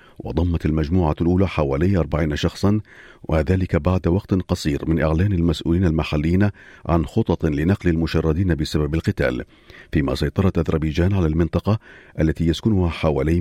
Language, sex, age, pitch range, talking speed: Arabic, male, 40-59, 75-95 Hz, 125 wpm